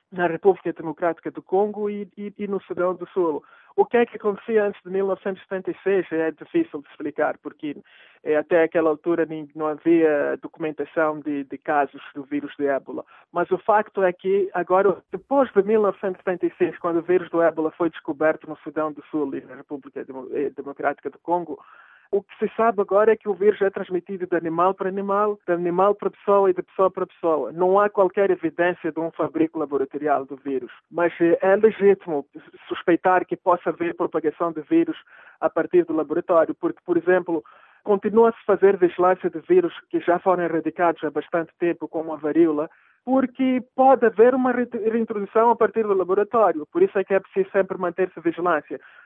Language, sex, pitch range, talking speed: Portuguese, male, 160-205 Hz, 180 wpm